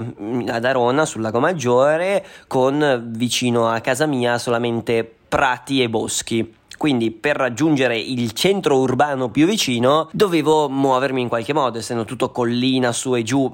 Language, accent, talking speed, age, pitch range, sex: Italian, native, 145 wpm, 20-39, 115-135 Hz, male